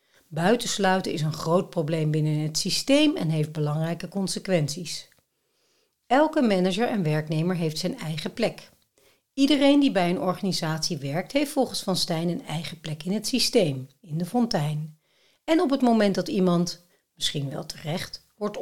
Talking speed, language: 160 wpm, Dutch